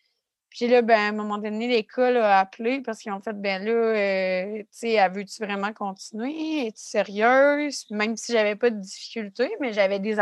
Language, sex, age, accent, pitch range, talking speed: French, female, 30-49, Canadian, 190-220 Hz, 210 wpm